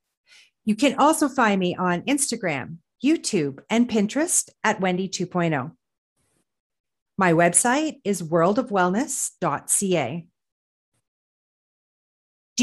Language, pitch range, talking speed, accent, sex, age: English, 180-235 Hz, 80 wpm, American, female, 40-59